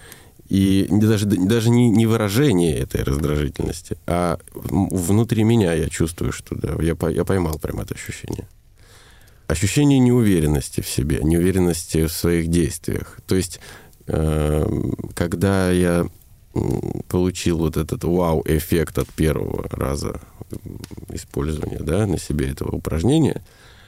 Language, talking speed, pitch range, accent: Russian, 110 wpm, 80-105 Hz, native